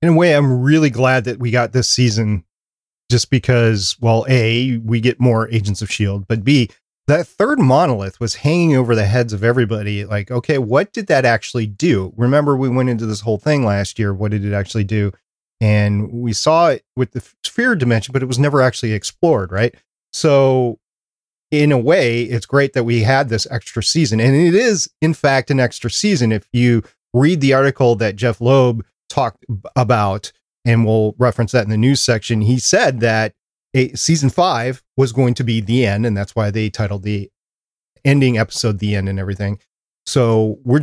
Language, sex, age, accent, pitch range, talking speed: English, male, 30-49, American, 110-130 Hz, 195 wpm